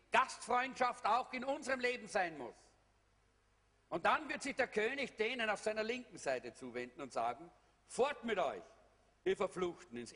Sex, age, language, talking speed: male, 50-69, German, 160 wpm